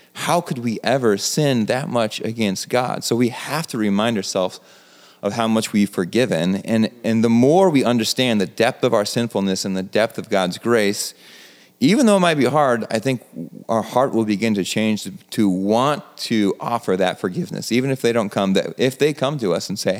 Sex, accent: male, American